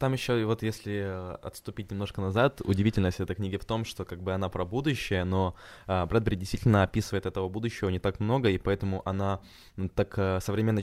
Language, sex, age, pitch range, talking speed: Ukrainian, male, 20-39, 90-110 Hz, 175 wpm